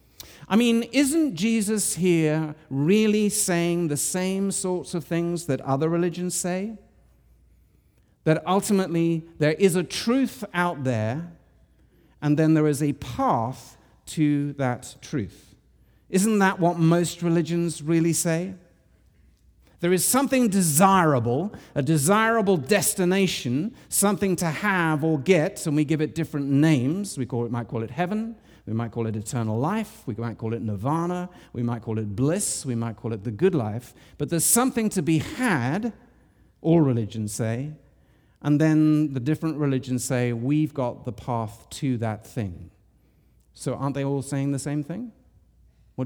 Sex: male